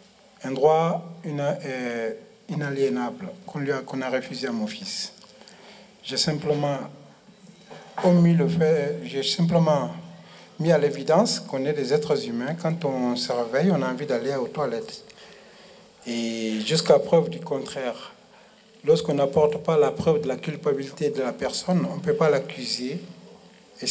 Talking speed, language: 145 wpm, French